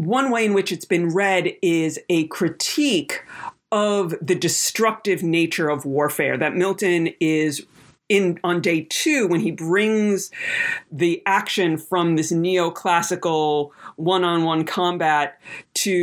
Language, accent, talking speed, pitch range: English, American, 125 wpm, 160-200 Hz